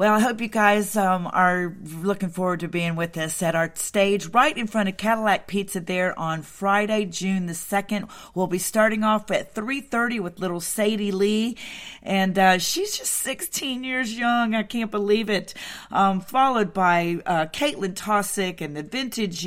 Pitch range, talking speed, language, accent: 180-220 Hz, 180 wpm, English, American